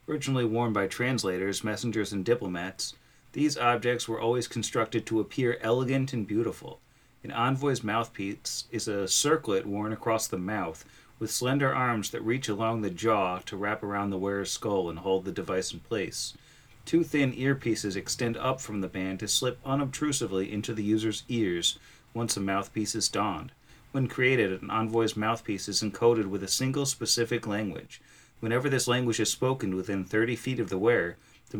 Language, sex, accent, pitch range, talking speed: English, male, American, 95-120 Hz, 175 wpm